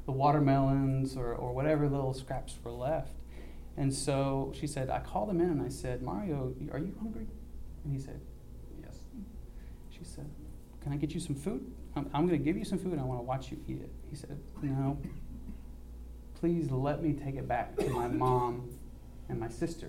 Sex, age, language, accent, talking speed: male, 30-49, English, American, 195 wpm